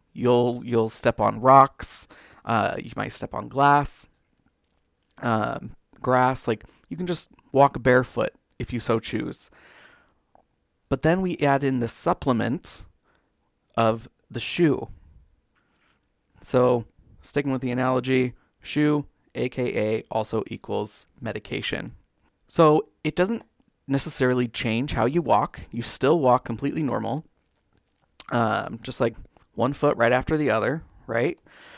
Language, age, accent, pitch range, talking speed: English, 30-49, American, 115-145 Hz, 125 wpm